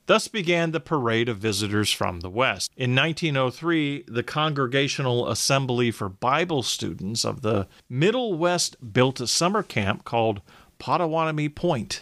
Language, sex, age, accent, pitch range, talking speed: English, male, 40-59, American, 120-165 Hz, 140 wpm